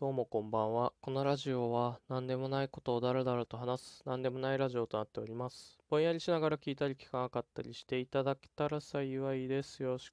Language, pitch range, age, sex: Japanese, 115-155 Hz, 20-39, male